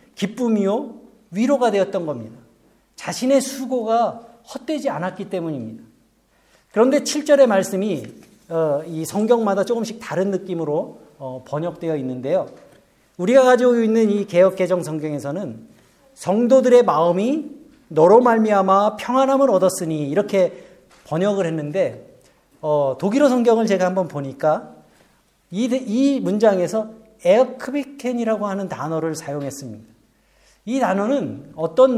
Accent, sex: native, male